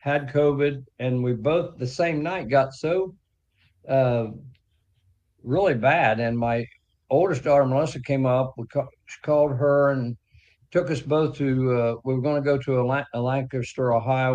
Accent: American